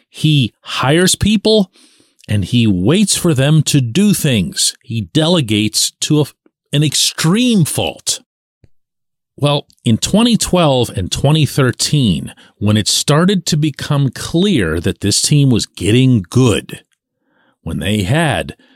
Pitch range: 100-155 Hz